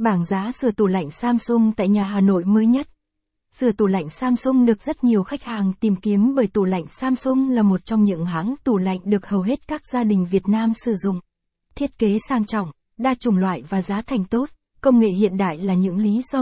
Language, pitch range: Vietnamese, 195-235 Hz